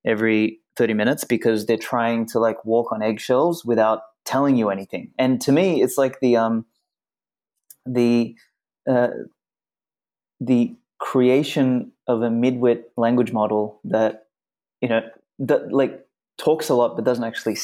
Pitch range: 105-125 Hz